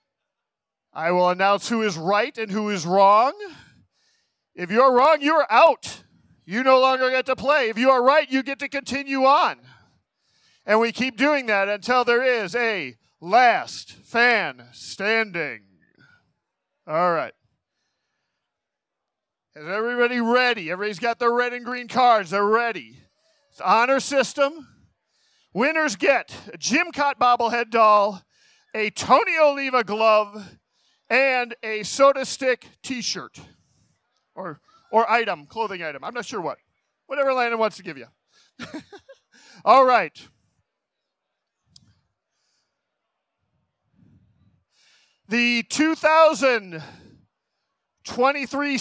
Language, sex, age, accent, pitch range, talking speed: English, male, 40-59, American, 205-270 Hz, 115 wpm